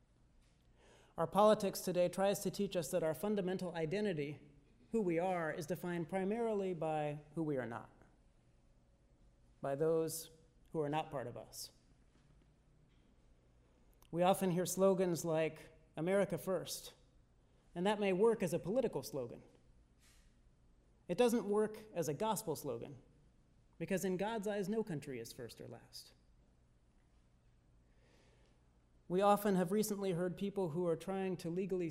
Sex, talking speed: male, 135 wpm